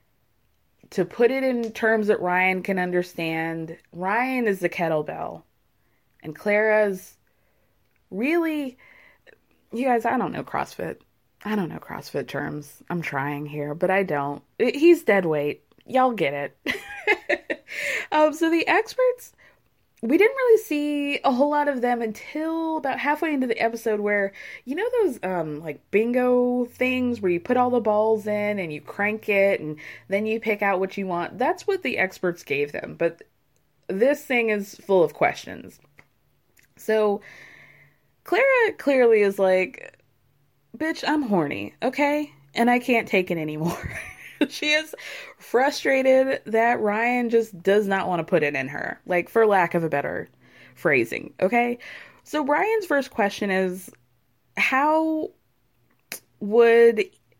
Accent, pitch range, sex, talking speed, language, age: American, 180-275 Hz, female, 150 wpm, English, 20-39